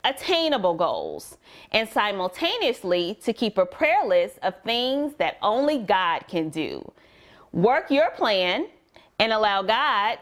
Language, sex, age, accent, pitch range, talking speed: English, female, 30-49, American, 195-295 Hz, 130 wpm